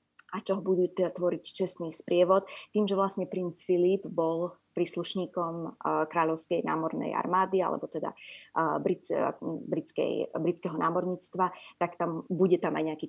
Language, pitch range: Slovak, 165-190 Hz